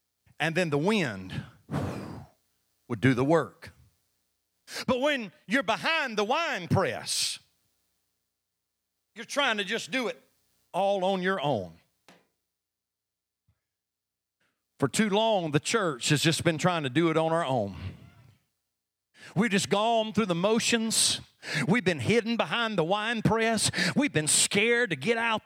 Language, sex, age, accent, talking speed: English, male, 50-69, American, 140 wpm